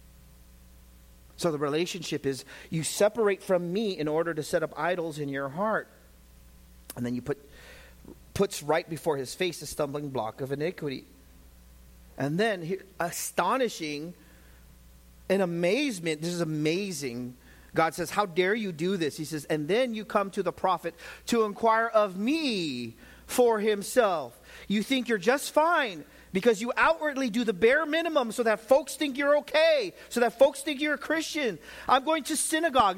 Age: 40-59